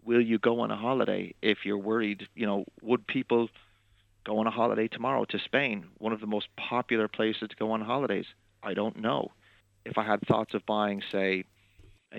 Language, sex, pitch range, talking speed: English, male, 100-110 Hz, 200 wpm